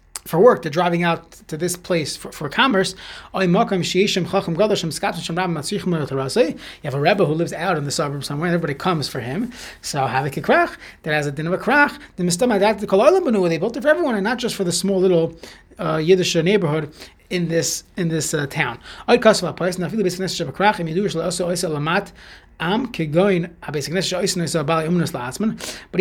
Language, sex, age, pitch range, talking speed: English, male, 30-49, 165-205 Hz, 130 wpm